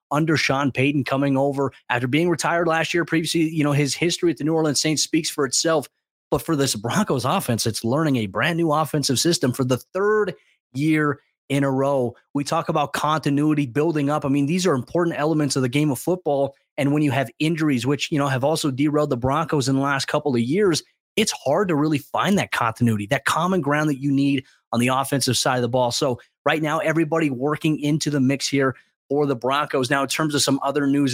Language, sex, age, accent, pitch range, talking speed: English, male, 30-49, American, 135-155 Hz, 225 wpm